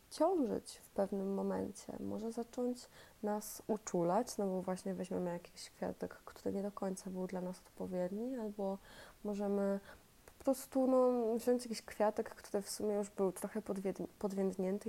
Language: Polish